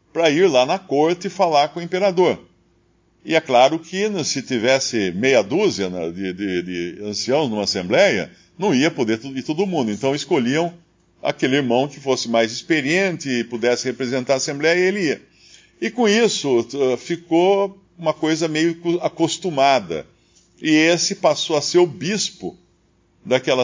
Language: Portuguese